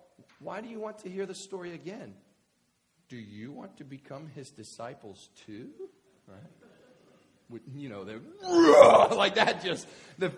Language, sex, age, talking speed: English, male, 40-59, 145 wpm